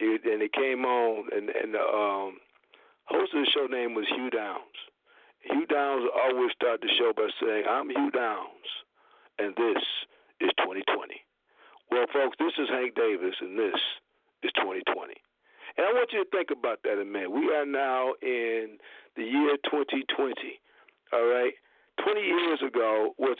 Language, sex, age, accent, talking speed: English, male, 50-69, American, 165 wpm